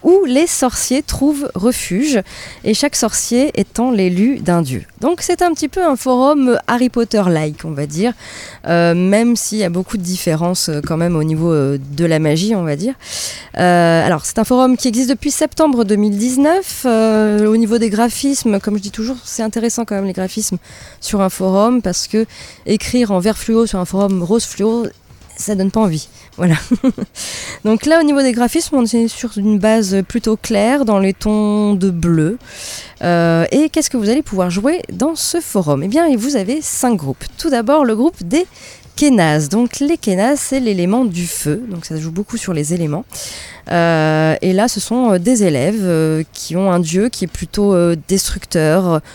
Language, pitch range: French, 170-245 Hz